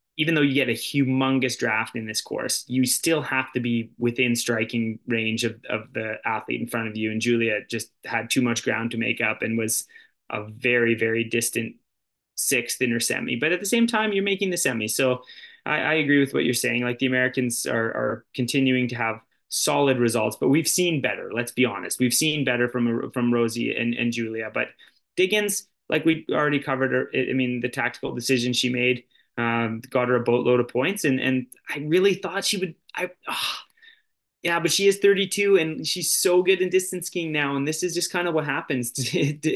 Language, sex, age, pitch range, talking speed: English, male, 20-39, 120-155 Hz, 215 wpm